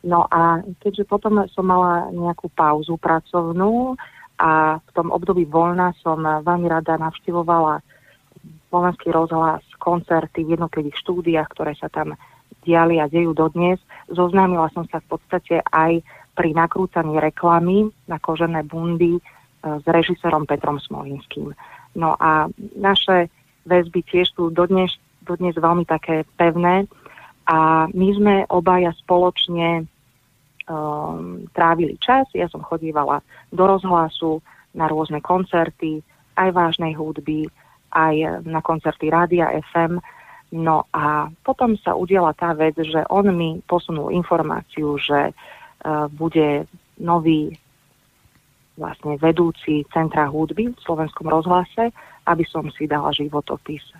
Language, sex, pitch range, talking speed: Slovak, female, 155-175 Hz, 120 wpm